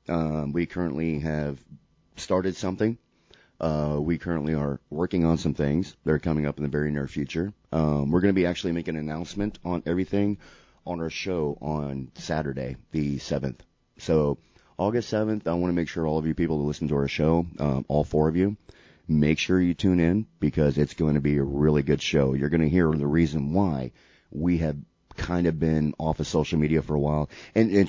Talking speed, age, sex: 210 wpm, 30-49, male